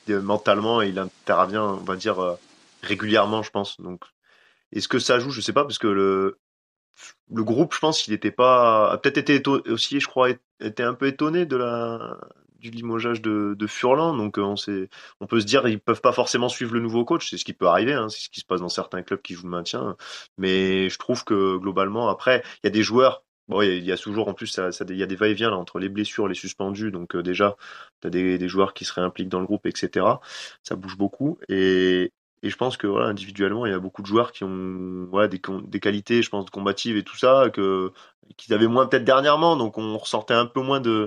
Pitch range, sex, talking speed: 95-120 Hz, male, 245 wpm